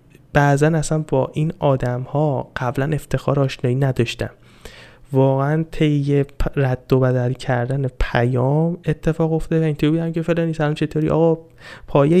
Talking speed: 140 wpm